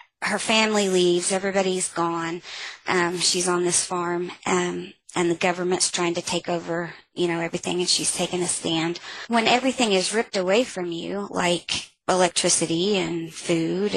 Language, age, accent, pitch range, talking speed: English, 30-49, American, 175-190 Hz, 160 wpm